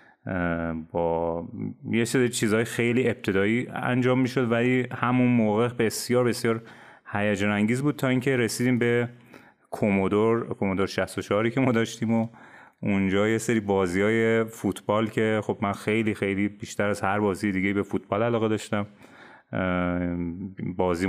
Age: 30-49